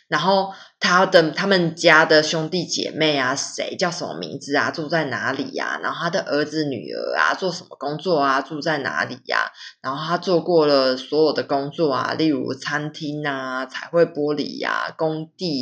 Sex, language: female, Chinese